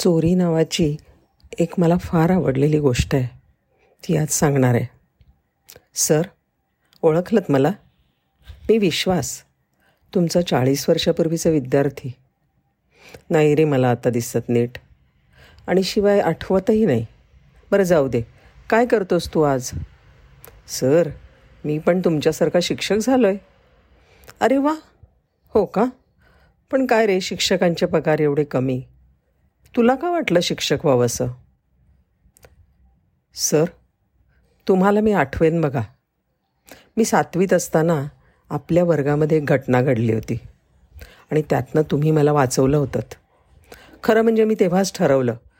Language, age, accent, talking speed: Marathi, 50-69, native, 105 wpm